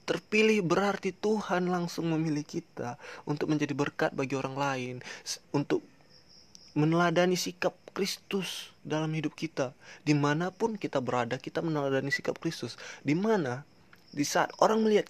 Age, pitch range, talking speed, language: 20-39, 130-175 Hz, 125 wpm, Indonesian